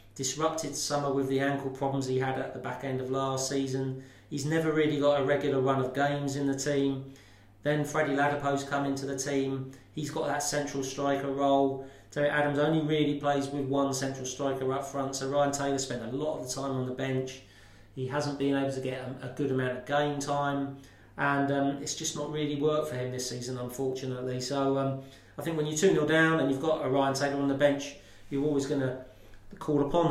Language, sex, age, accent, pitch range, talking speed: English, male, 30-49, British, 130-145 Hz, 220 wpm